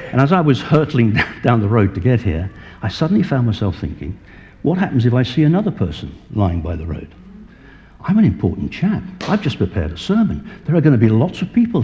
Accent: British